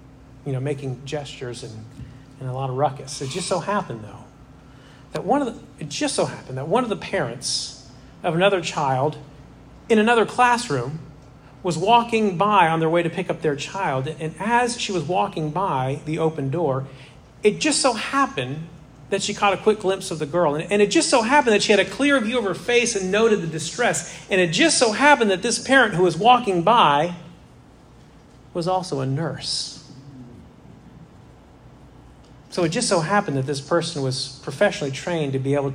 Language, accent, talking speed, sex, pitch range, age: English, American, 195 wpm, male, 135-195 Hz, 40-59